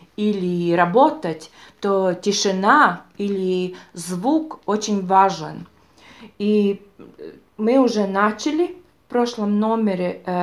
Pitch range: 180-225 Hz